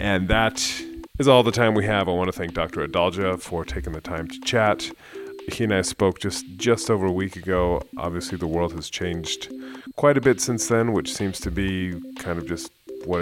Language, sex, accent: English, male, American